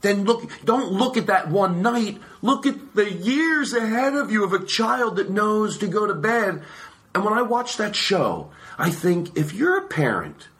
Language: English